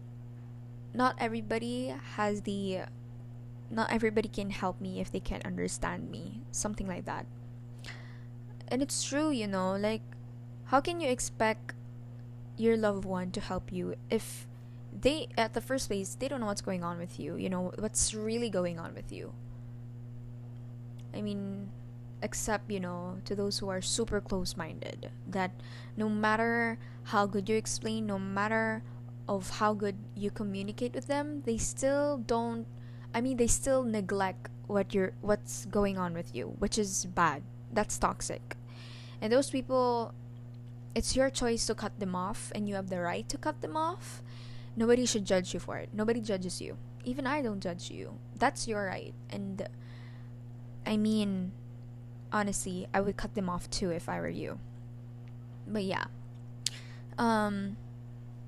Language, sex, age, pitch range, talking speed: English, female, 20-39, 120-200 Hz, 160 wpm